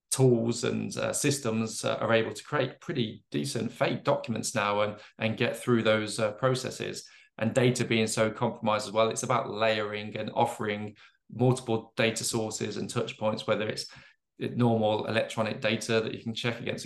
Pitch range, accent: 110-125 Hz, British